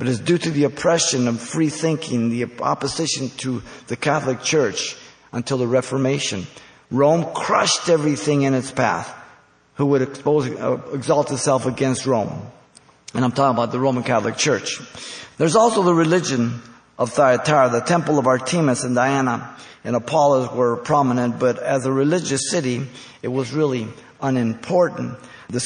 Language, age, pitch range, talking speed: English, 50-69, 125-150 Hz, 155 wpm